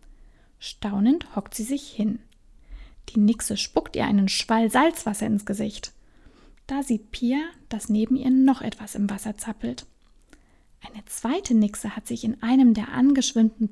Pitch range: 210-265 Hz